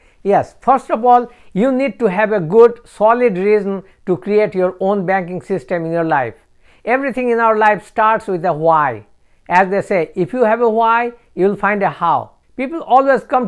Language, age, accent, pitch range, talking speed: English, 60-79, Indian, 175-225 Hz, 200 wpm